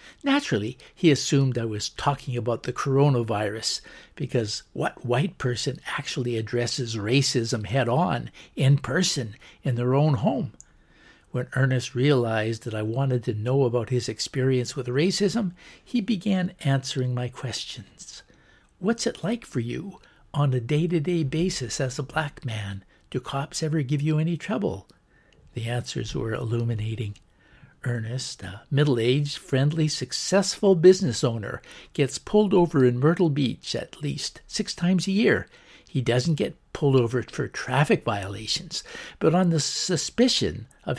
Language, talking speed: English, 145 wpm